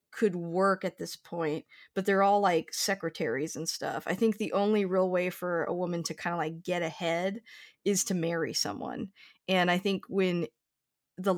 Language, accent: English, American